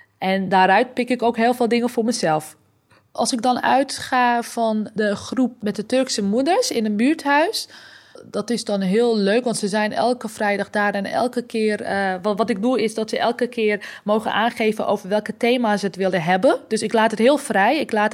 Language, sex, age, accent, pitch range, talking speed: Dutch, female, 20-39, Dutch, 200-250 Hz, 210 wpm